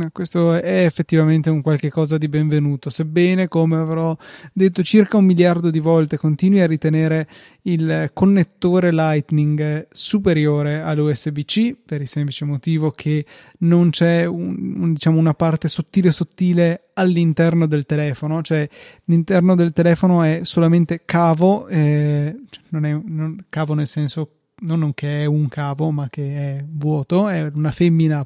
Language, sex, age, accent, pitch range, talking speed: Italian, male, 20-39, native, 150-170 Hz, 135 wpm